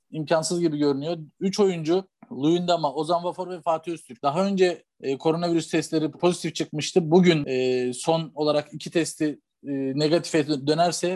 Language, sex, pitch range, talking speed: Turkish, male, 155-185 Hz, 150 wpm